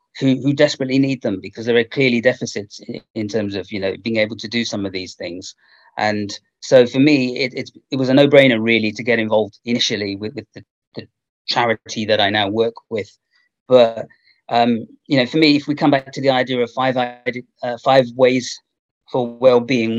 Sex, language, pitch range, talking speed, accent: male, English, 110-125 Hz, 205 wpm, British